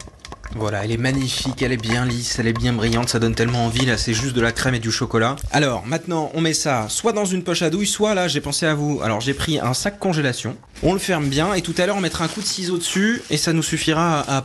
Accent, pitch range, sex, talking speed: French, 120-165 Hz, male, 285 wpm